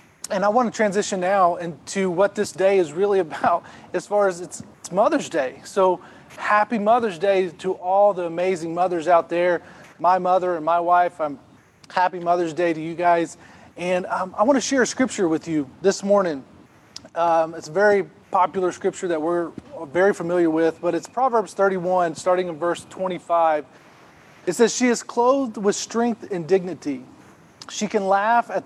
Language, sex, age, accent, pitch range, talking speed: English, male, 30-49, American, 165-200 Hz, 180 wpm